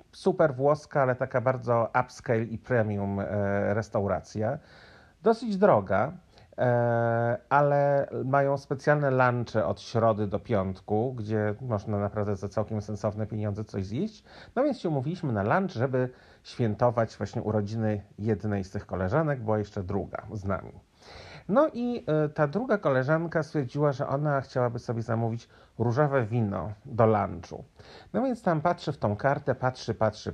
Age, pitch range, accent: 40-59, 105-150 Hz, native